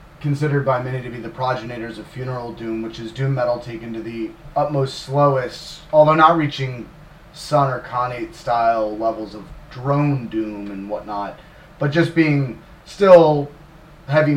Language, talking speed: English, 150 wpm